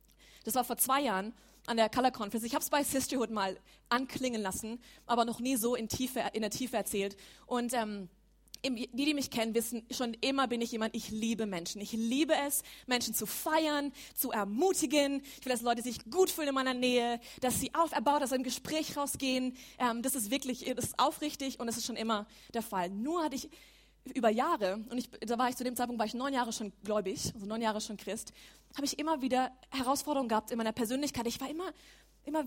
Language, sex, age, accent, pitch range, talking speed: German, female, 20-39, German, 220-270 Hz, 220 wpm